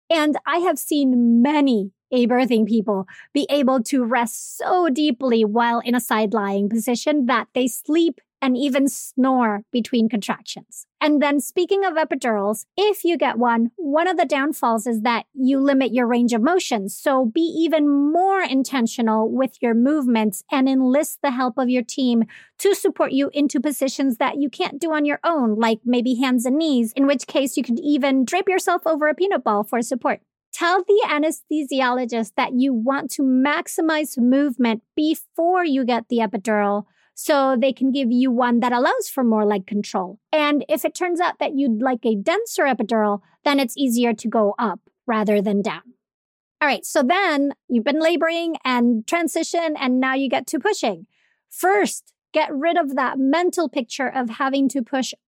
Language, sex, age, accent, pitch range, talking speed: English, female, 40-59, American, 235-305 Hz, 180 wpm